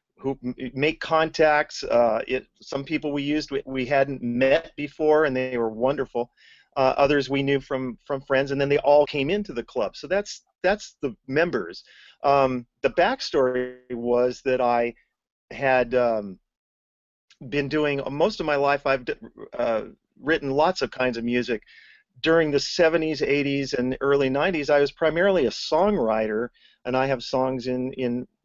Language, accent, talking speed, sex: English, American, 165 wpm, male